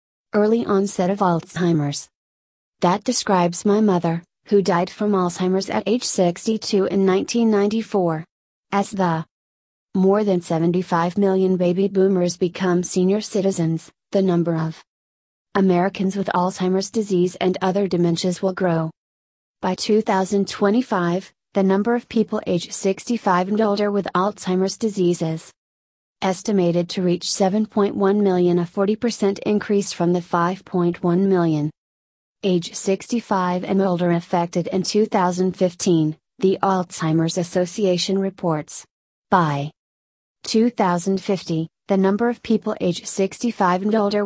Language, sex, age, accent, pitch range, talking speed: English, female, 30-49, American, 175-200 Hz, 120 wpm